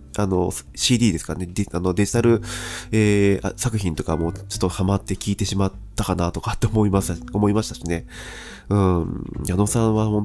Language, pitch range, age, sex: Japanese, 90-110 Hz, 20-39, male